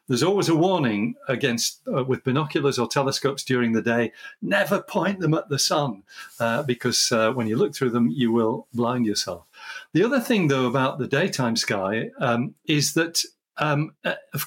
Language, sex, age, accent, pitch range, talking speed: English, male, 50-69, British, 120-155 Hz, 180 wpm